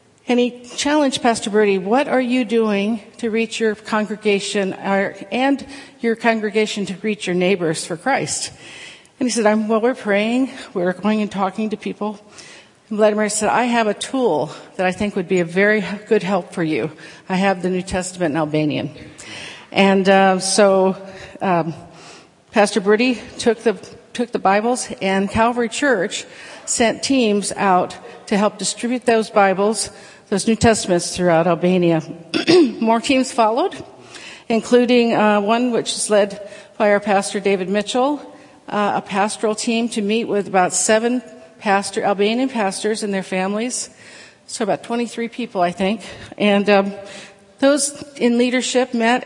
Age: 50-69